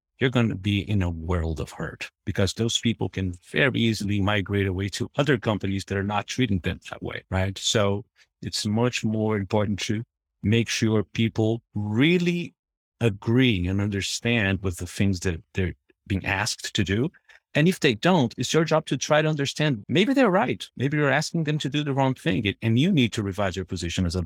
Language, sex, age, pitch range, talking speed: English, male, 50-69, 100-125 Hz, 205 wpm